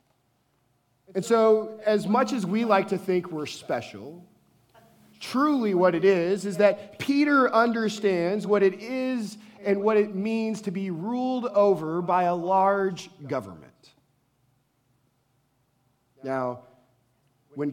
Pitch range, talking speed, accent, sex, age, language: 130-185 Hz, 120 wpm, American, male, 40-59, English